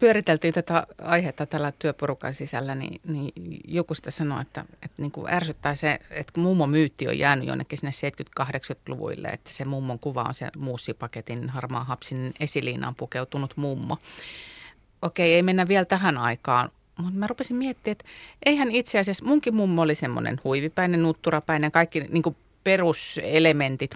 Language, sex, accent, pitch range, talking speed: Finnish, female, native, 135-175 Hz, 150 wpm